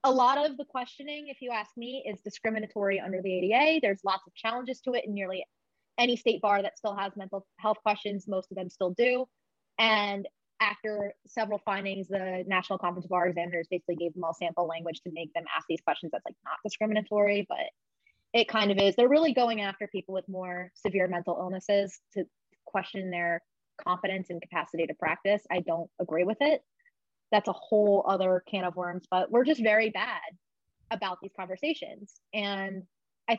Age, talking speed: 20-39, 190 wpm